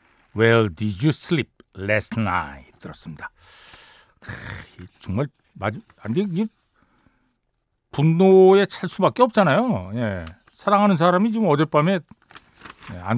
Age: 60-79